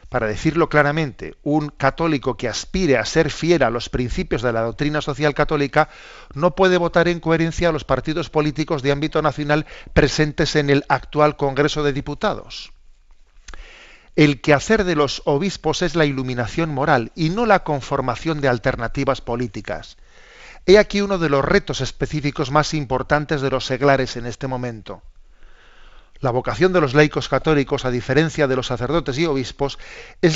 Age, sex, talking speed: 40-59, male, 160 wpm